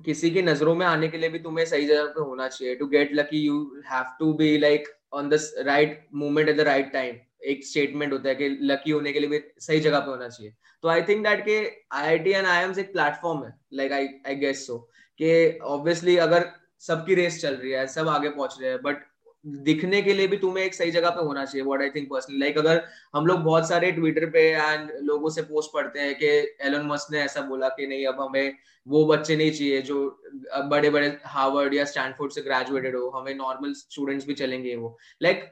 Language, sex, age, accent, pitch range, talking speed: Hindi, male, 20-39, native, 145-175 Hz, 205 wpm